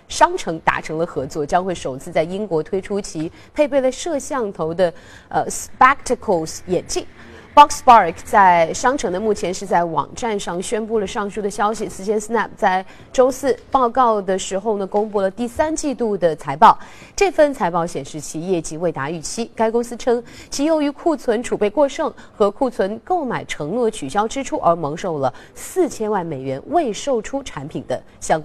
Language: Chinese